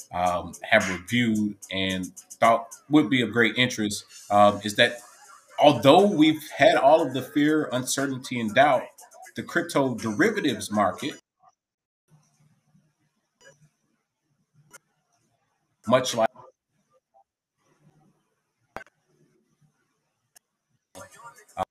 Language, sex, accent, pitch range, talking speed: English, male, American, 105-150 Hz, 85 wpm